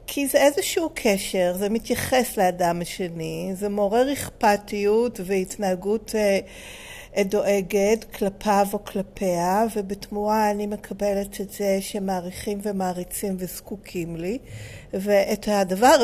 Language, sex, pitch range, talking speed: Hebrew, female, 195-235 Hz, 100 wpm